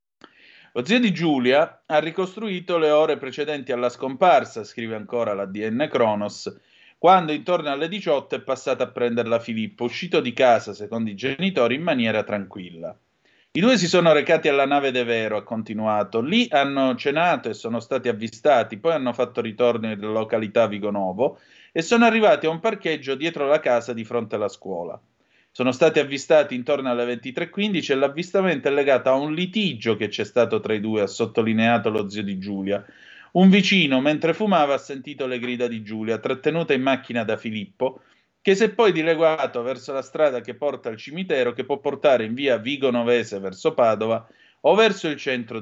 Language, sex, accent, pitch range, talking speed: Italian, male, native, 110-160 Hz, 180 wpm